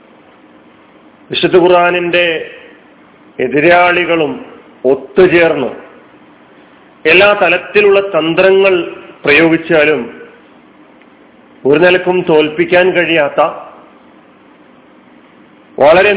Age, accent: 40-59, native